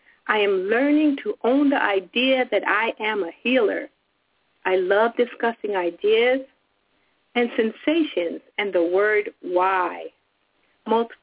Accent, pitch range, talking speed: American, 180-250 Hz, 125 wpm